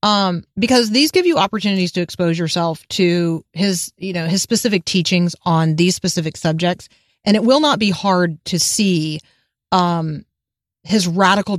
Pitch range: 170-215 Hz